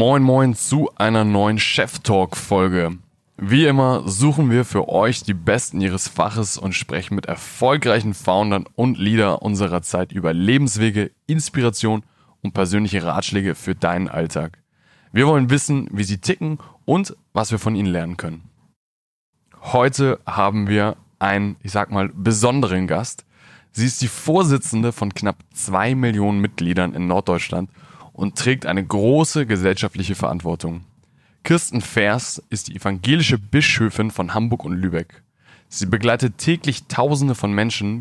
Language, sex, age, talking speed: German, male, 20-39, 140 wpm